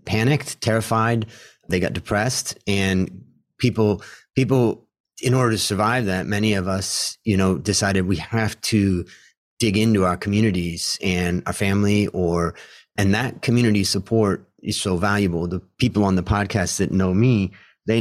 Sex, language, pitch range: male, English, 95-110 Hz